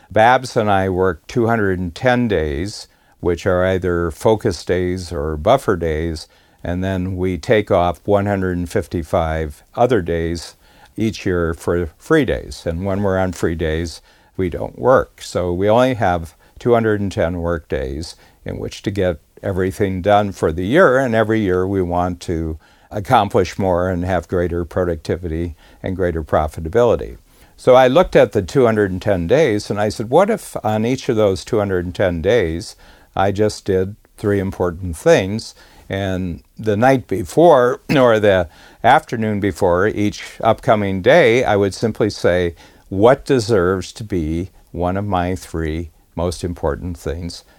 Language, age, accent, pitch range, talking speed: English, 60-79, American, 85-105 Hz, 150 wpm